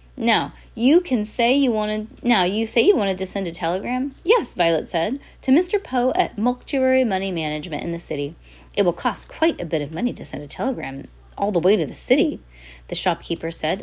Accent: American